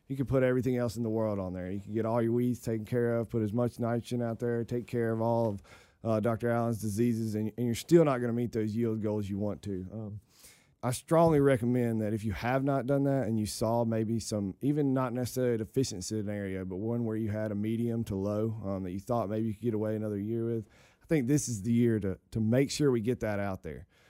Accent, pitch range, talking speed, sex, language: American, 105-130 Hz, 260 wpm, male, English